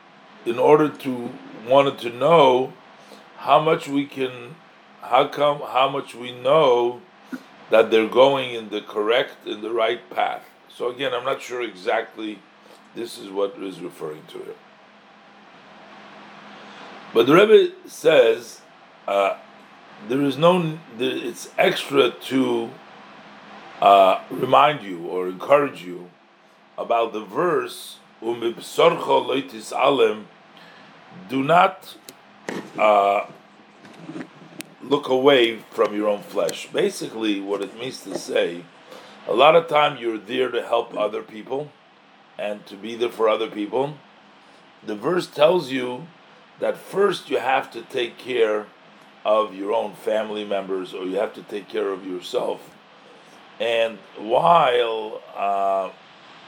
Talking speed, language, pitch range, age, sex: 130 wpm, English, 105-145 Hz, 50-69, male